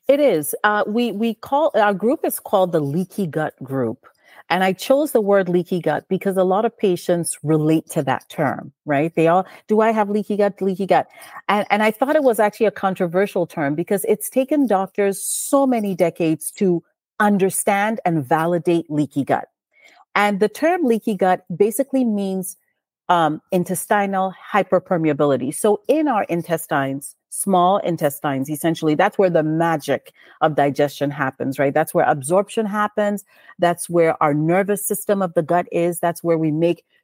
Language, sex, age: English, female, 40-59